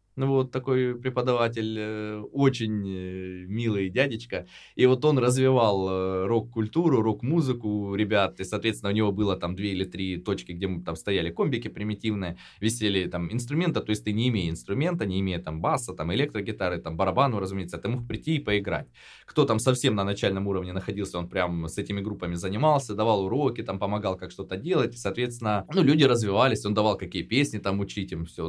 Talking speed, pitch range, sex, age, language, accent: 180 wpm, 90-115 Hz, male, 20-39, Russian, native